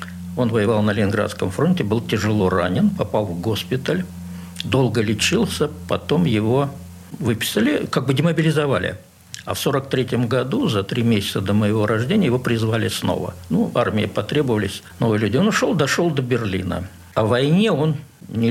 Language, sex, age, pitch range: Russian, male, 60-79, 105-145 Hz